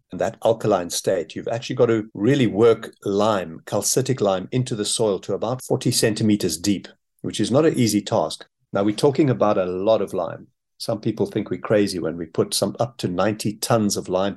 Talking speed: 205 wpm